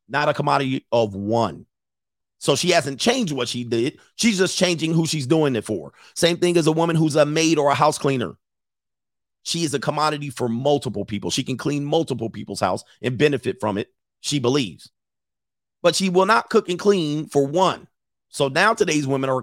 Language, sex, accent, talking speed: English, male, American, 200 wpm